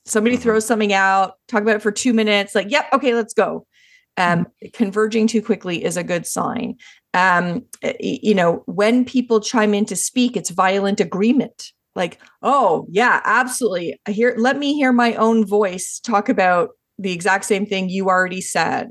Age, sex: 30-49, female